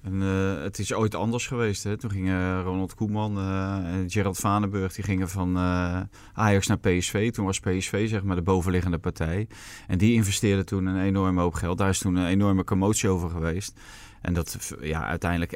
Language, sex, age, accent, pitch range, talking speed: Dutch, male, 30-49, Dutch, 90-105 Hz, 175 wpm